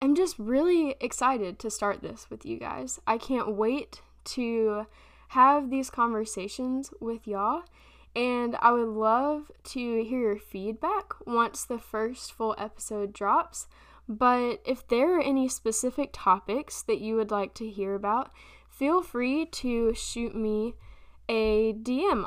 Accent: American